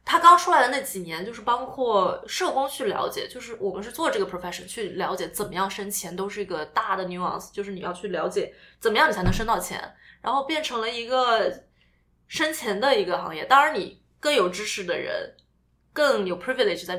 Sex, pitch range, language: female, 190-260 Hz, Chinese